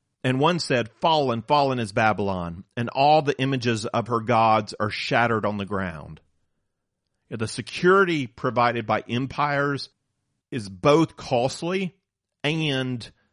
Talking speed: 125 wpm